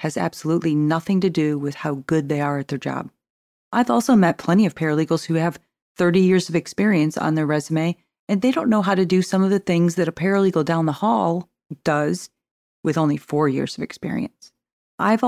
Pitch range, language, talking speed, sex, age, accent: 155-200 Hz, English, 210 wpm, female, 40-59, American